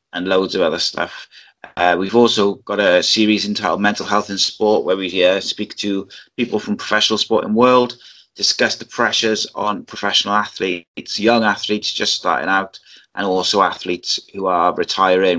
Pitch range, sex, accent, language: 95-110 Hz, male, British, English